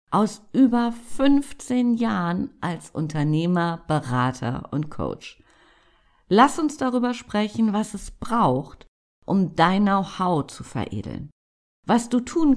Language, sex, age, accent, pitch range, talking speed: German, female, 50-69, German, 150-235 Hz, 115 wpm